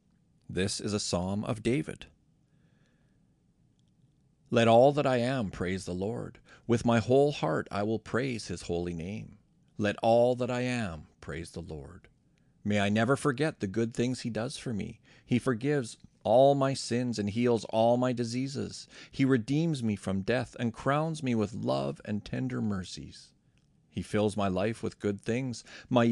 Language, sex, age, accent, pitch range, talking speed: English, male, 40-59, American, 100-130 Hz, 170 wpm